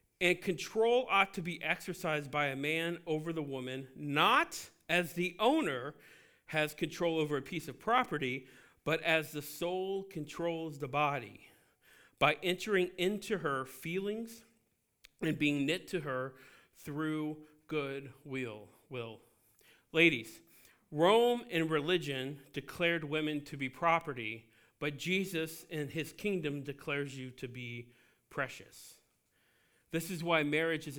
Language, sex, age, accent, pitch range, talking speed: English, male, 40-59, American, 135-170 Hz, 130 wpm